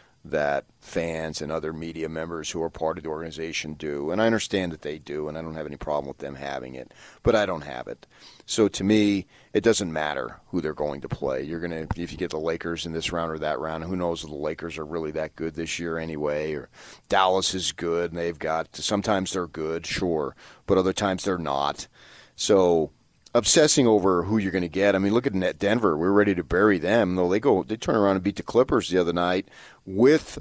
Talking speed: 235 wpm